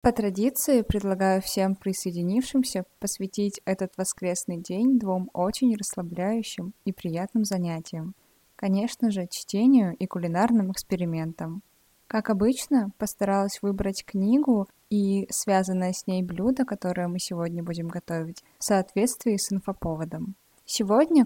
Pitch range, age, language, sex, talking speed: 185-220 Hz, 20-39, Russian, female, 115 wpm